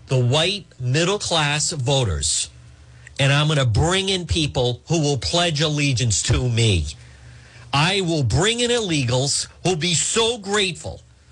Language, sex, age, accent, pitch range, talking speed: English, male, 50-69, American, 115-170 Hz, 145 wpm